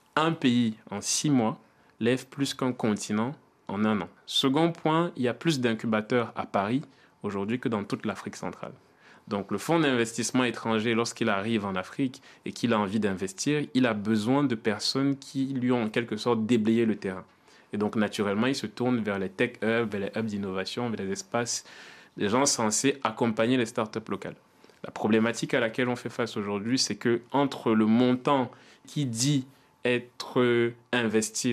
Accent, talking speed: French, 175 wpm